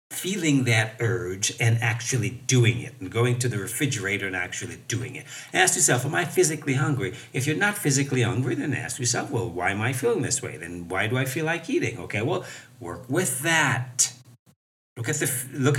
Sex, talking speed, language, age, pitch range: male, 190 wpm, English, 60-79, 120-150 Hz